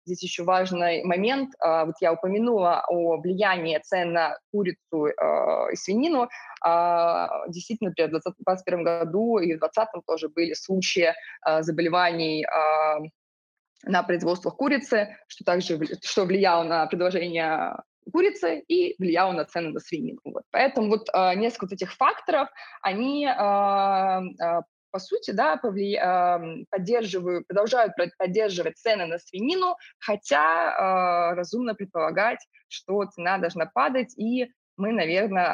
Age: 20-39